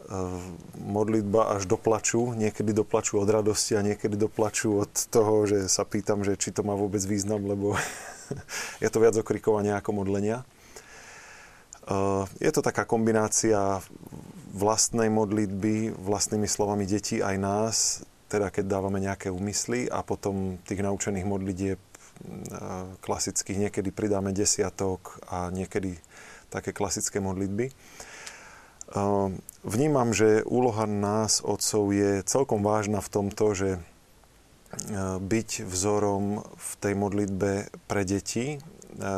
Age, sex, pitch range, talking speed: 20-39, male, 100-110 Hz, 120 wpm